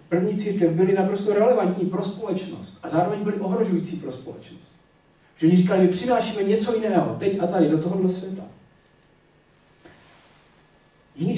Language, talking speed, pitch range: Czech, 130 wpm, 160-195 Hz